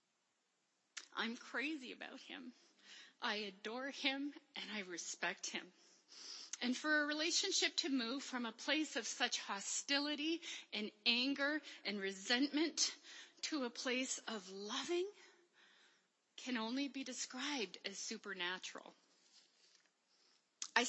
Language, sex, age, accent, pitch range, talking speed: English, female, 40-59, American, 200-280 Hz, 110 wpm